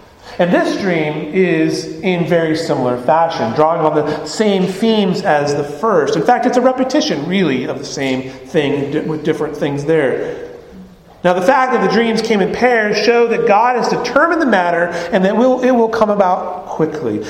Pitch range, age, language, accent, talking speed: 170-235 Hz, 40-59, English, American, 185 wpm